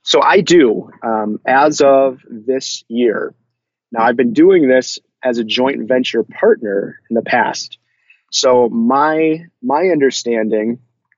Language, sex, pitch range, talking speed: English, male, 110-125 Hz, 135 wpm